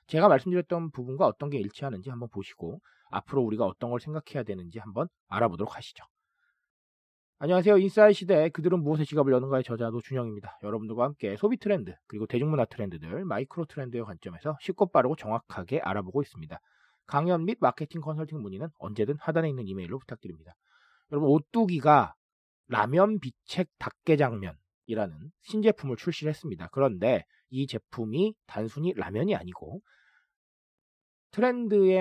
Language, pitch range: Korean, 120-195 Hz